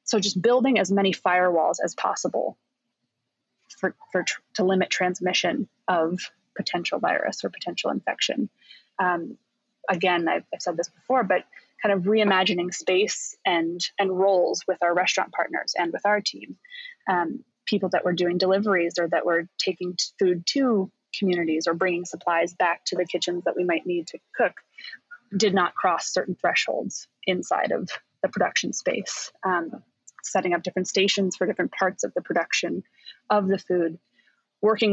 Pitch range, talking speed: 180-210 Hz, 165 wpm